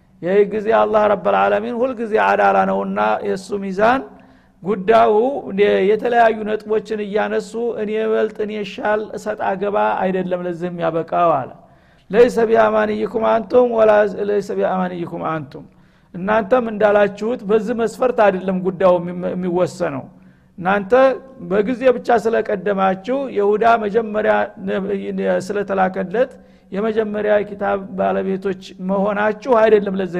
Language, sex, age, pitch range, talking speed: Amharic, male, 50-69, 185-225 Hz, 90 wpm